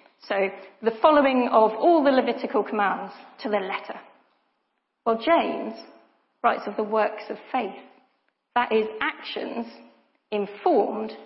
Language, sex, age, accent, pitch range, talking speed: English, female, 40-59, British, 210-260 Hz, 125 wpm